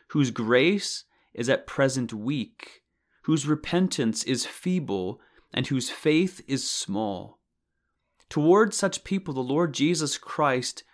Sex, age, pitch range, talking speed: male, 30-49, 125-165 Hz, 120 wpm